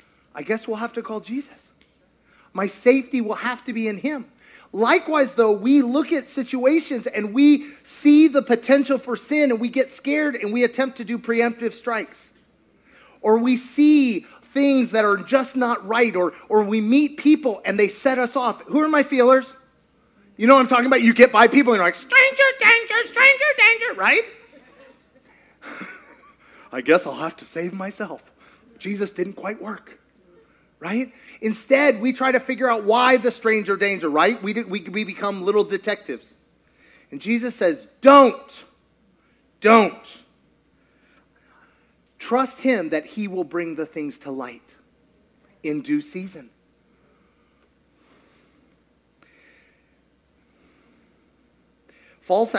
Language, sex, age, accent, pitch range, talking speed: English, male, 30-49, American, 205-270 Hz, 145 wpm